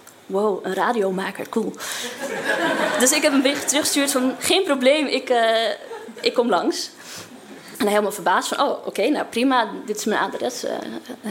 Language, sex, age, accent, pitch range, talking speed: Dutch, female, 20-39, Dutch, 205-235 Hz, 175 wpm